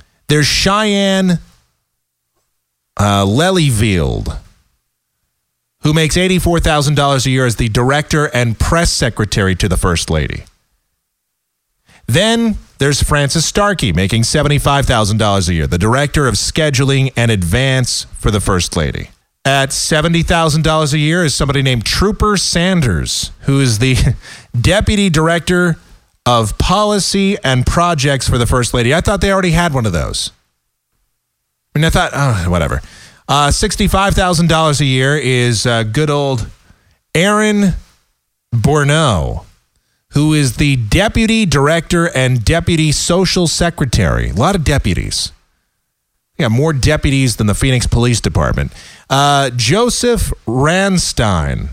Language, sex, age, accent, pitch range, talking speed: English, male, 30-49, American, 100-160 Hz, 125 wpm